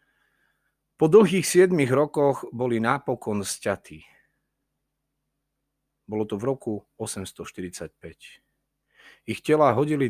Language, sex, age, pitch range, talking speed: Slovak, male, 40-59, 95-135 Hz, 90 wpm